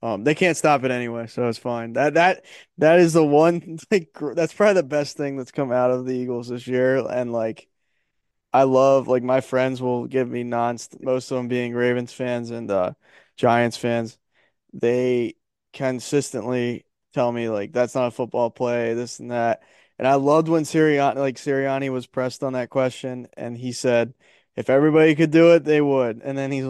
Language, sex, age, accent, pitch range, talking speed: English, male, 20-39, American, 125-145 Hz, 205 wpm